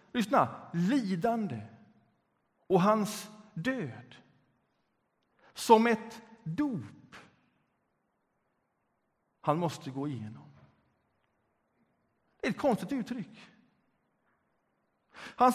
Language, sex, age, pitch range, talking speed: Swedish, male, 60-79, 165-235 Hz, 70 wpm